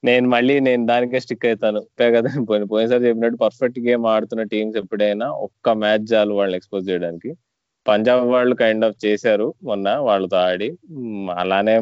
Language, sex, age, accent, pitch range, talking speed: Telugu, male, 20-39, native, 95-115 Hz, 145 wpm